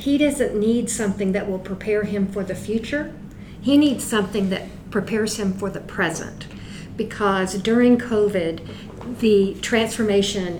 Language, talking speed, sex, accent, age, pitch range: English, 140 wpm, female, American, 50-69, 195-230 Hz